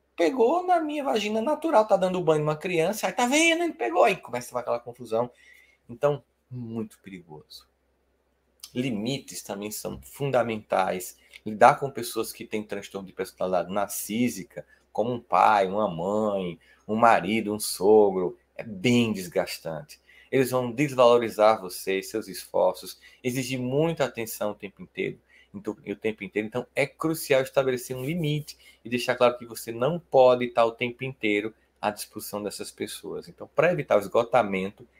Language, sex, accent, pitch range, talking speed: Portuguese, male, Brazilian, 105-130 Hz, 150 wpm